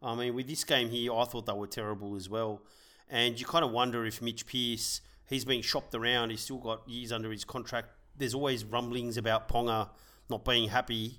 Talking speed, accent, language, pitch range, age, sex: 215 wpm, Australian, English, 115-135 Hz, 30-49, male